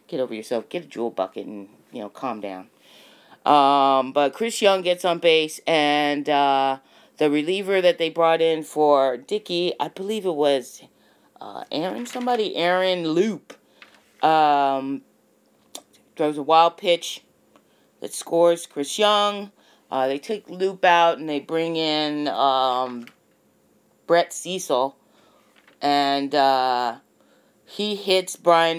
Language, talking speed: English, 135 wpm